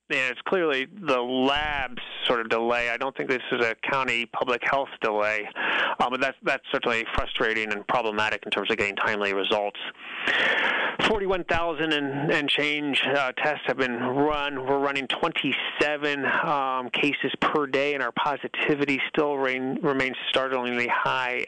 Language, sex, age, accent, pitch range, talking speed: English, male, 30-49, American, 115-145 Hz, 155 wpm